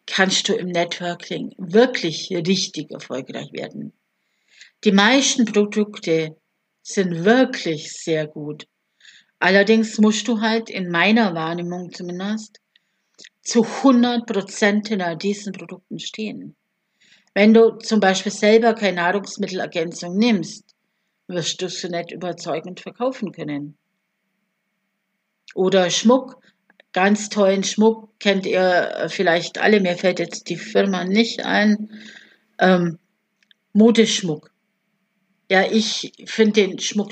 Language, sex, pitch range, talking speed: German, female, 180-220 Hz, 110 wpm